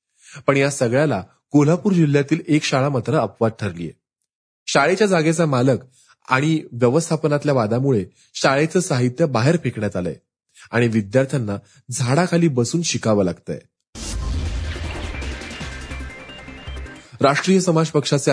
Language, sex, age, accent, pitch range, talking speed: Marathi, male, 30-49, native, 110-165 Hz, 100 wpm